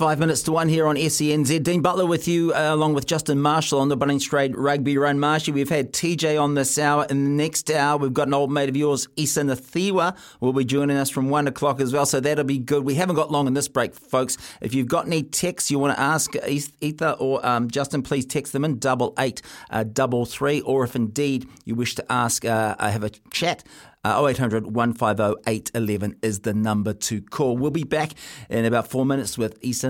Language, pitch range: English, 120-150 Hz